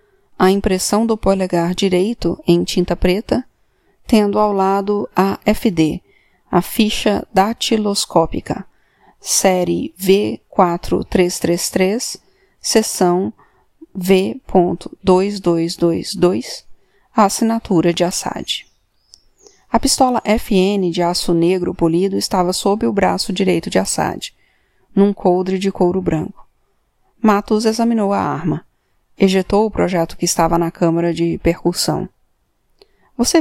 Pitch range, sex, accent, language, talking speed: 175-230 Hz, female, Brazilian, Portuguese, 100 wpm